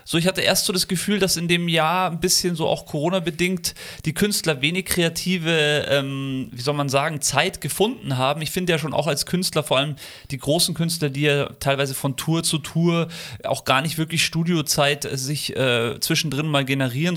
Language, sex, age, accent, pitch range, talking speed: German, male, 30-49, German, 135-165 Hz, 200 wpm